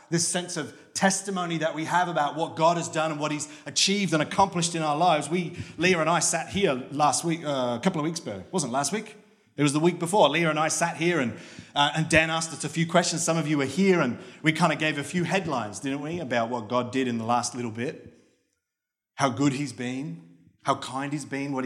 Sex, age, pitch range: male, 30-49, 130-170 Hz